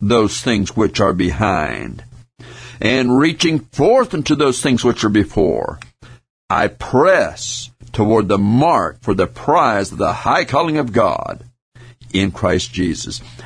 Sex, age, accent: male, 60-79, American